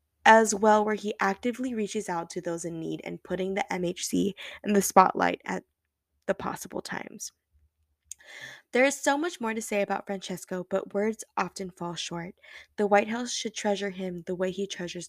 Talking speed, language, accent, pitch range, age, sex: 185 wpm, English, American, 175-230 Hz, 10-29, female